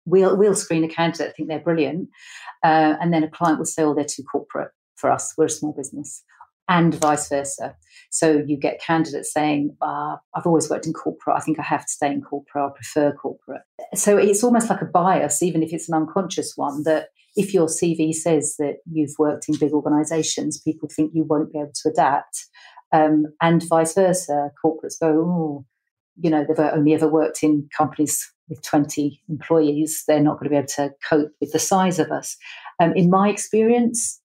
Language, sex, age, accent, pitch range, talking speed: English, female, 40-59, British, 150-165 Hz, 205 wpm